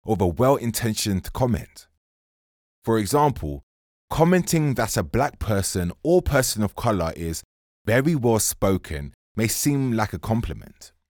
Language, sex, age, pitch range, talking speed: English, male, 20-39, 80-120 Hz, 125 wpm